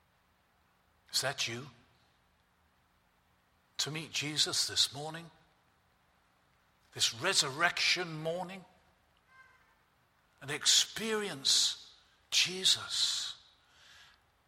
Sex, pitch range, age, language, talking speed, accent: male, 130-190 Hz, 50-69, English, 60 wpm, British